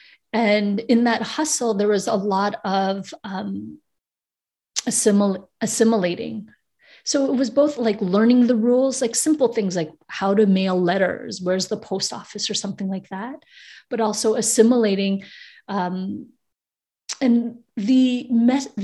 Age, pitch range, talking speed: 30-49, 195-235 Hz, 125 wpm